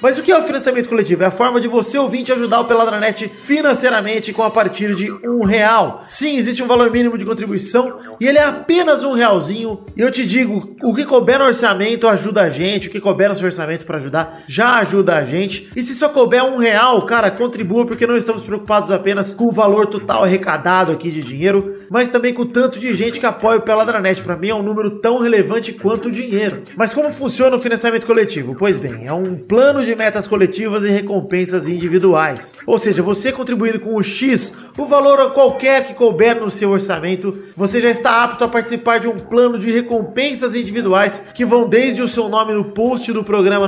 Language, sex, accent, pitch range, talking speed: Portuguese, male, Brazilian, 195-240 Hz, 220 wpm